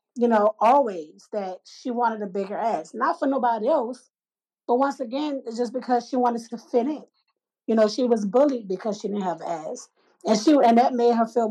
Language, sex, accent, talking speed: English, female, American, 215 wpm